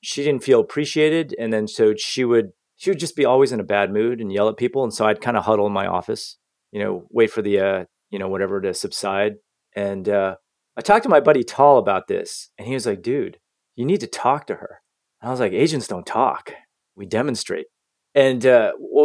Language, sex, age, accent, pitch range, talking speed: English, male, 30-49, American, 105-145 Hz, 235 wpm